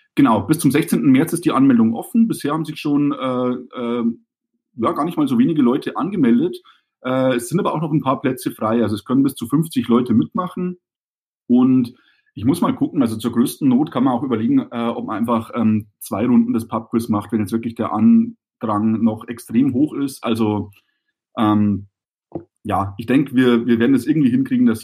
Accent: German